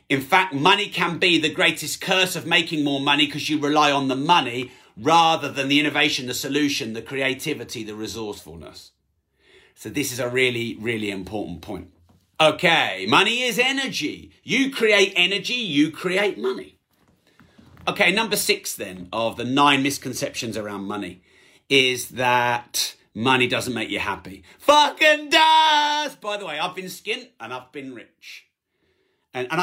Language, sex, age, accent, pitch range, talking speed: English, male, 40-59, British, 130-220 Hz, 155 wpm